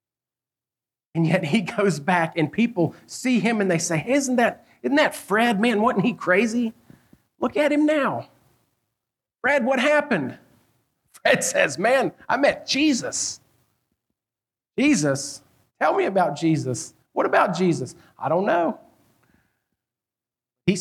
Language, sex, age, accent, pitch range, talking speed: English, male, 40-59, American, 140-195 Hz, 130 wpm